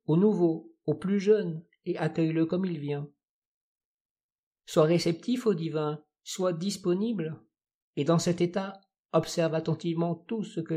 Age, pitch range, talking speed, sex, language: 50-69, 150-175 Hz, 140 wpm, male, French